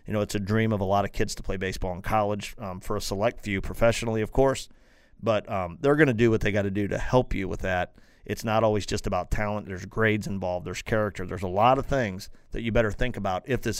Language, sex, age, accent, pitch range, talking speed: English, male, 40-59, American, 100-125 Hz, 270 wpm